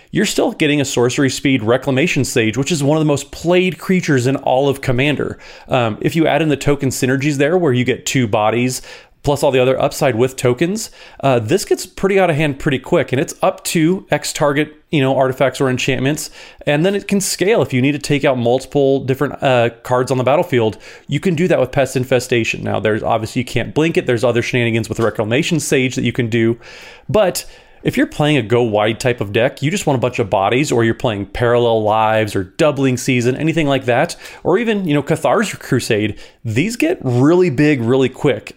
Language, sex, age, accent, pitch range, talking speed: English, male, 30-49, American, 120-150 Hz, 220 wpm